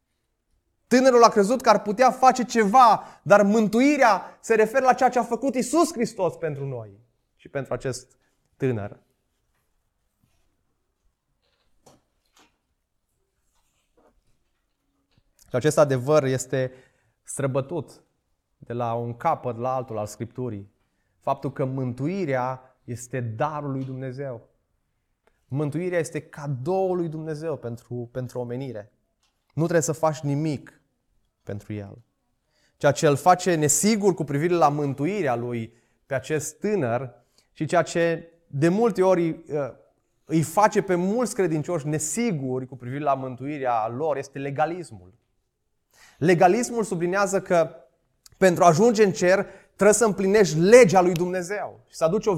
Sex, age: male, 20-39